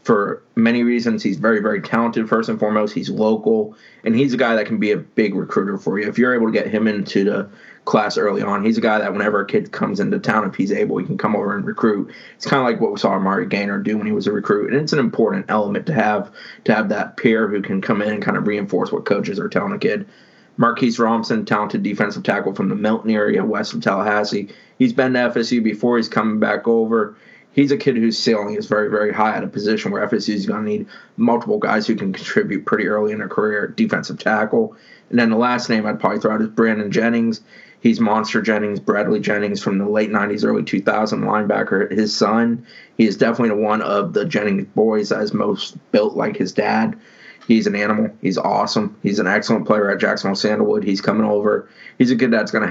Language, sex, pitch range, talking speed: English, male, 105-125 Hz, 235 wpm